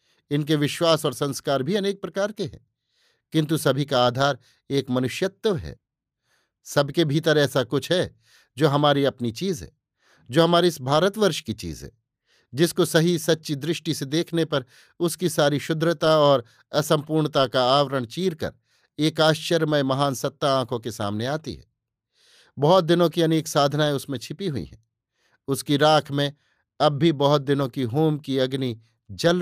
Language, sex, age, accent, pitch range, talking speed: Hindi, male, 50-69, native, 130-160 Hz, 160 wpm